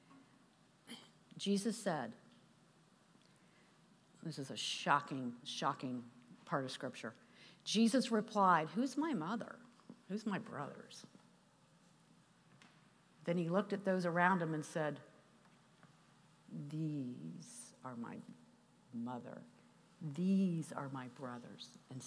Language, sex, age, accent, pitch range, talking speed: English, female, 50-69, American, 150-220 Hz, 100 wpm